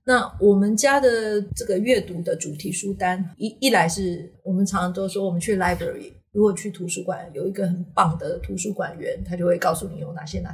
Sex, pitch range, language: female, 175-200 Hz, Chinese